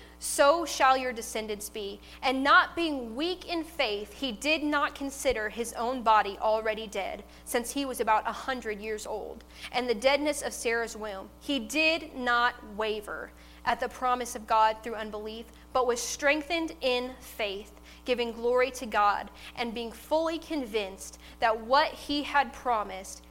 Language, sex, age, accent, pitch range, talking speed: English, female, 10-29, American, 220-275 Hz, 160 wpm